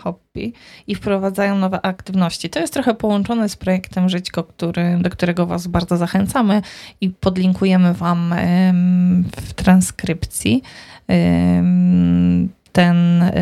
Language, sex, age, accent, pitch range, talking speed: Polish, female, 20-39, native, 165-190 Hz, 105 wpm